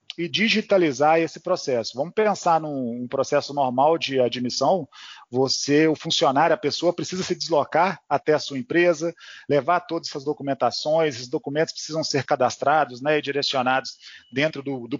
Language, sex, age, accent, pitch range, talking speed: Portuguese, male, 40-59, Brazilian, 140-170 Hz, 150 wpm